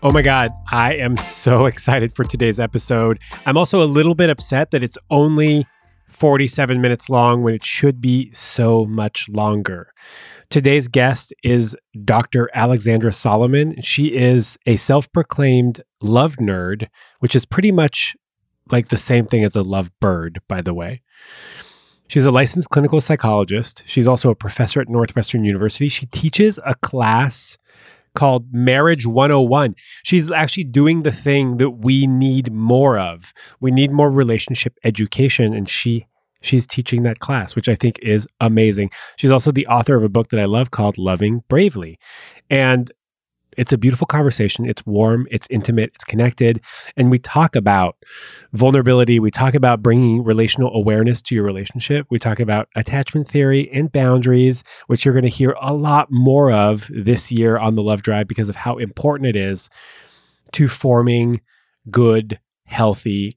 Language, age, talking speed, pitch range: English, 30-49, 160 wpm, 110-135 Hz